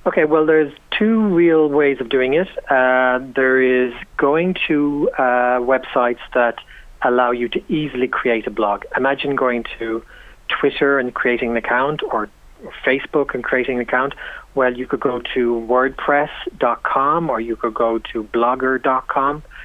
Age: 40-59